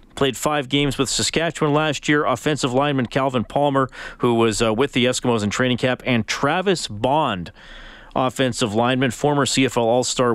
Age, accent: 40-59, American